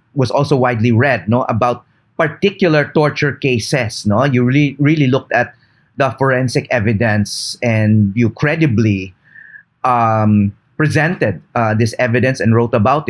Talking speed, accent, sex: 135 wpm, Filipino, male